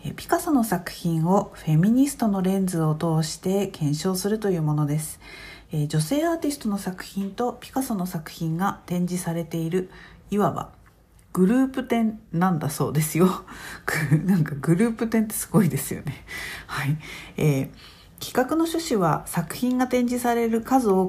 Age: 50-69